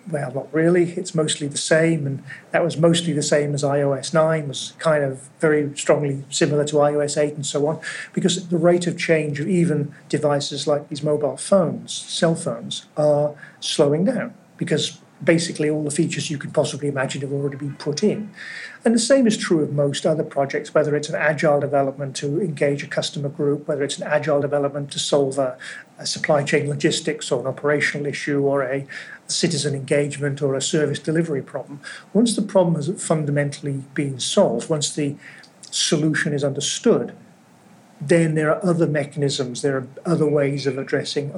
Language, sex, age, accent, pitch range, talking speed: English, male, 40-59, British, 145-170 Hz, 185 wpm